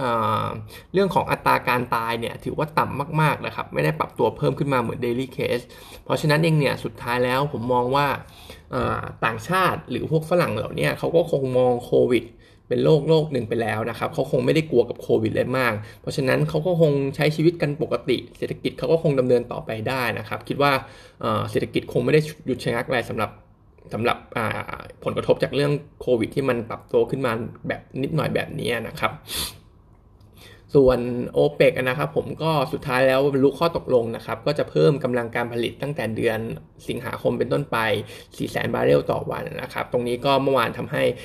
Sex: male